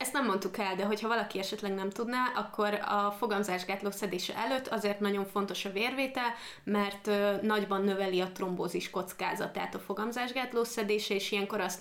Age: 20-39